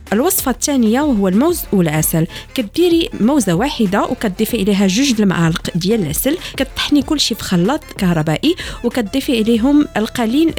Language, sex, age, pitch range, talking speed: French, female, 40-59, 185-265 Hz, 125 wpm